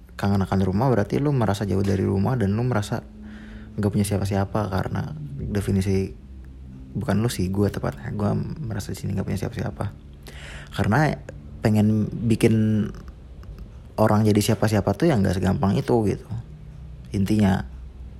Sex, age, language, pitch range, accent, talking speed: male, 20-39, Indonesian, 95-105 Hz, native, 140 wpm